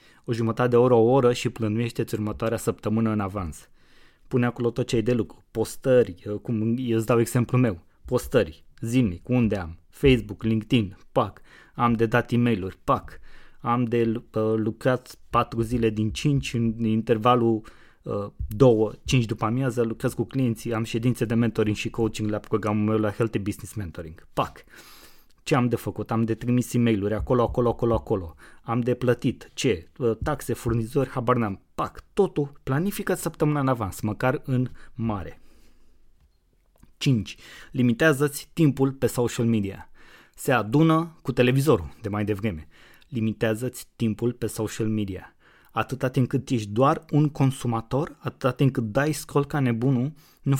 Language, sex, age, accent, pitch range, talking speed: Romanian, male, 20-39, native, 110-130 Hz, 155 wpm